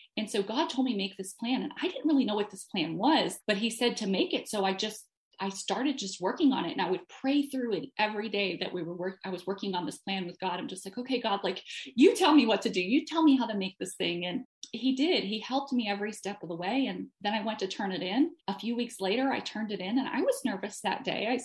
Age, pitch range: 30-49, 195-250 Hz